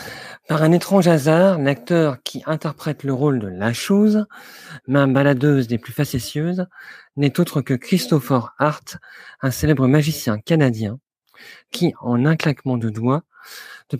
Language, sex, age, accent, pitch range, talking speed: French, male, 40-59, French, 130-165 Hz, 150 wpm